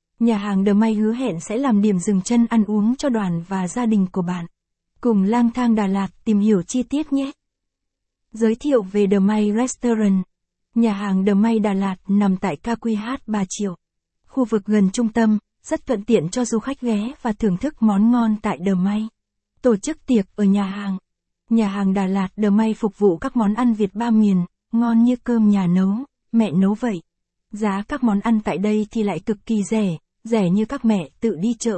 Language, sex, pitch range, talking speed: Vietnamese, female, 200-235 Hz, 215 wpm